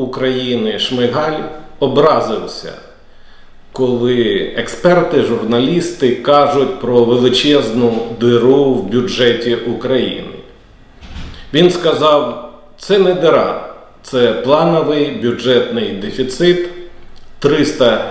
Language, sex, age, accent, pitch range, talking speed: Ukrainian, male, 40-59, native, 120-170 Hz, 75 wpm